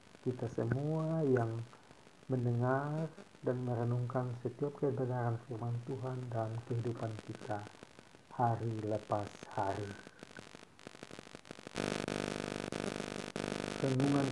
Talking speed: 70 wpm